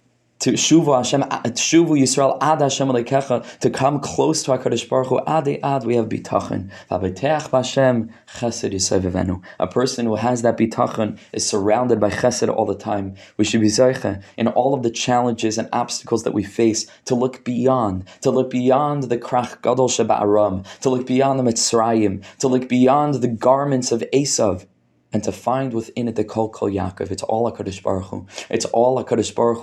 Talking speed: 185 wpm